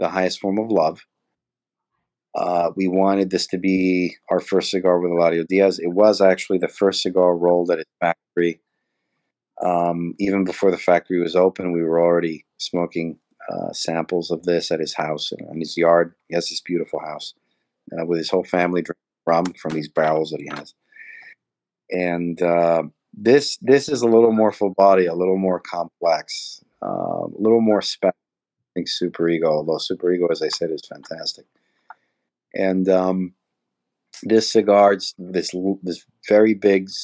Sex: male